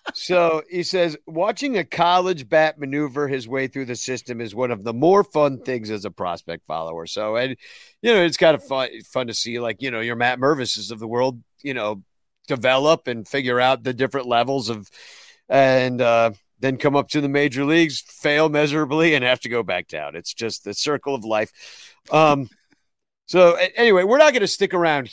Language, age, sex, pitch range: English, 50-69, male, 115-160 Hz